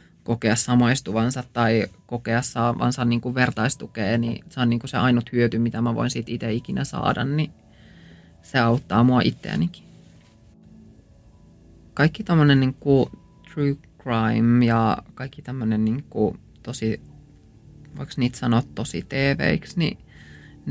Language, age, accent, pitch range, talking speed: Finnish, 20-39, native, 115-130 Hz, 130 wpm